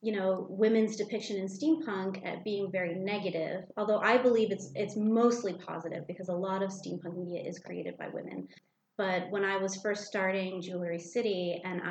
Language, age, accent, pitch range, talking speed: English, 30-49, American, 185-220 Hz, 180 wpm